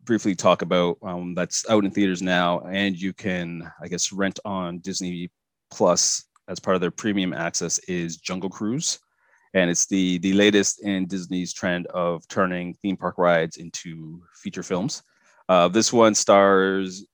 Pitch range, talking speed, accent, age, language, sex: 90-100 Hz, 165 wpm, American, 30-49, English, male